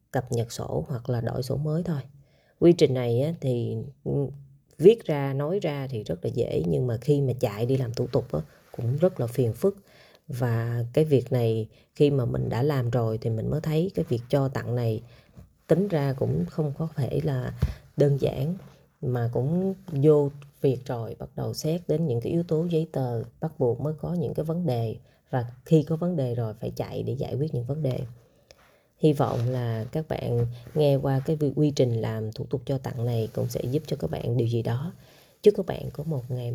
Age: 20-39